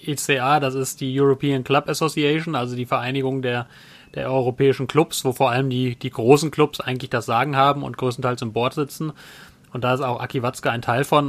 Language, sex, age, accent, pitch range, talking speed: German, male, 30-49, German, 125-140 Hz, 205 wpm